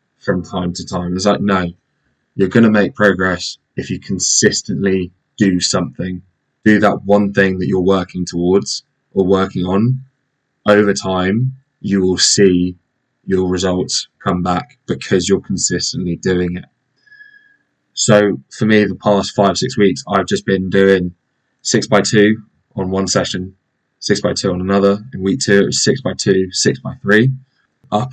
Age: 20-39